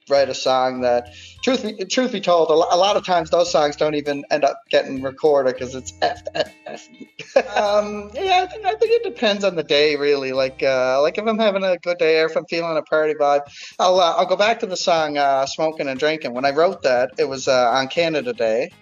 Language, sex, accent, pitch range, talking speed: English, male, American, 130-170 Hz, 250 wpm